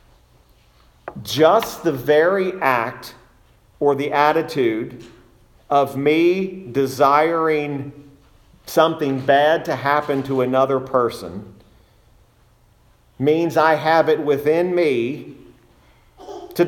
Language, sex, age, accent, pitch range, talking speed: English, male, 40-59, American, 120-160 Hz, 85 wpm